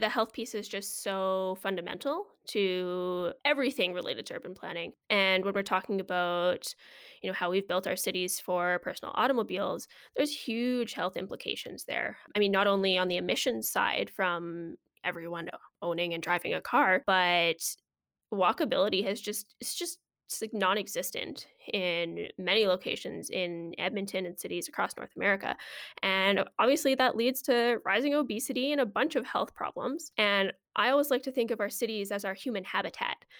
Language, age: English, 10-29